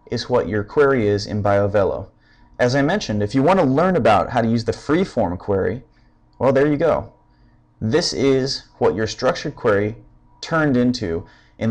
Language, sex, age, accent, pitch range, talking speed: English, male, 30-49, American, 100-125 Hz, 180 wpm